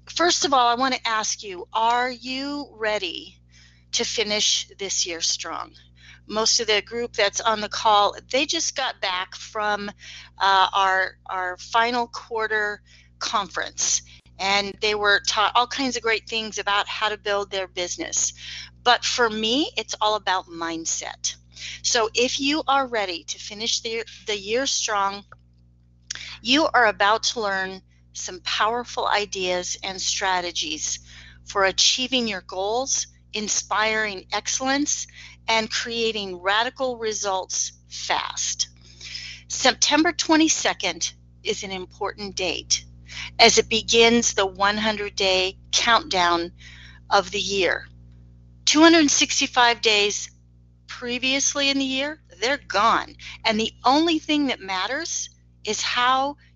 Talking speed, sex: 130 wpm, female